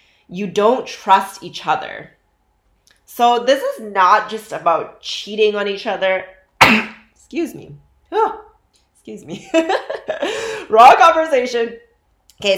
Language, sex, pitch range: English, female, 160-215 Hz